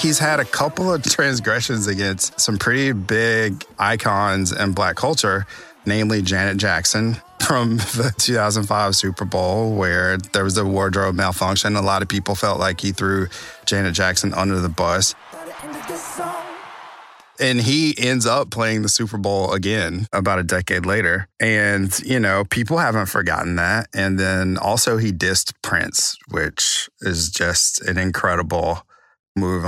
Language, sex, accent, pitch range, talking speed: English, male, American, 90-110 Hz, 150 wpm